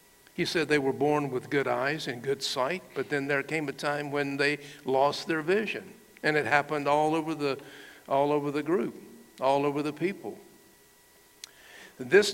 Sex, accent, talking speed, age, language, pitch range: male, American, 180 wpm, 60-79, English, 140-165 Hz